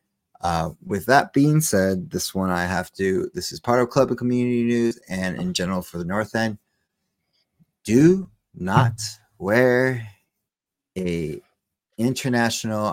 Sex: male